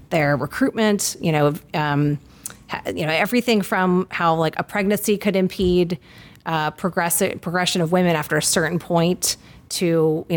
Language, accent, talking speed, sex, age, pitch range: English, American, 145 wpm, female, 30-49, 150-175 Hz